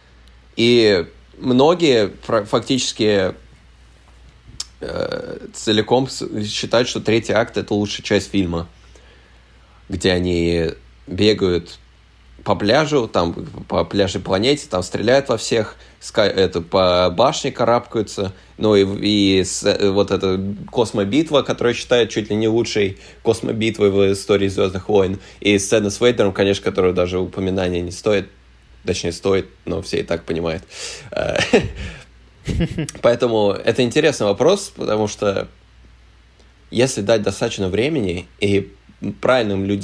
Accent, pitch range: native, 85-105 Hz